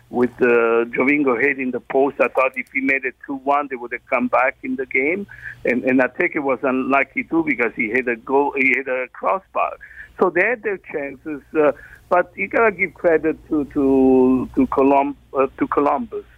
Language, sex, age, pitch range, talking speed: English, male, 60-79, 130-160 Hz, 210 wpm